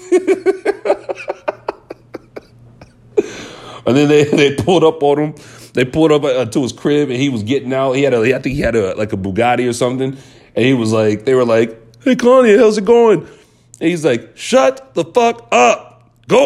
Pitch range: 115-160 Hz